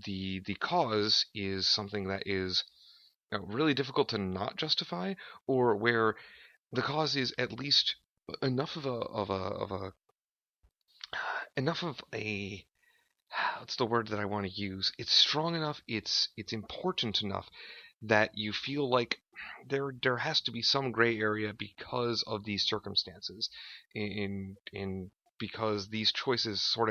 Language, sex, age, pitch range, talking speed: English, male, 30-49, 100-125 Hz, 150 wpm